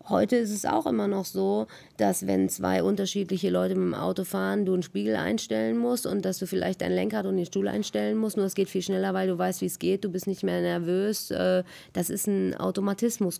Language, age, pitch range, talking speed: German, 30-49, 160-210 Hz, 235 wpm